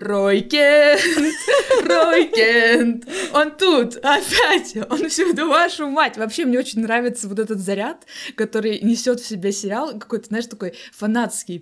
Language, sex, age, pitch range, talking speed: Russian, female, 20-39, 190-240 Hz, 130 wpm